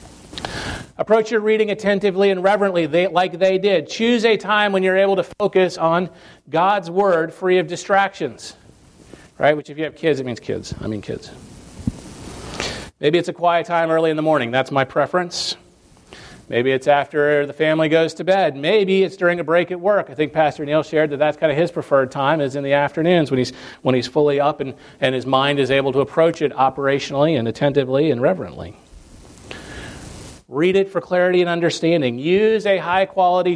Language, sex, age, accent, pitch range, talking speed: English, male, 40-59, American, 145-190 Hz, 190 wpm